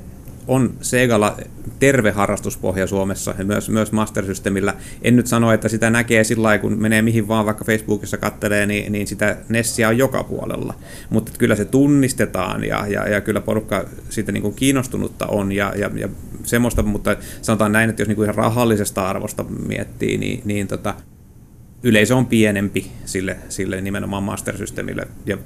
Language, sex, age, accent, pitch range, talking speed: Finnish, male, 30-49, native, 100-115 Hz, 165 wpm